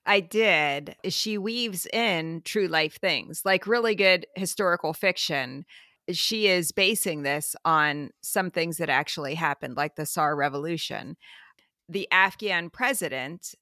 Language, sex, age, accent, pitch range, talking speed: English, female, 40-59, American, 155-195 Hz, 130 wpm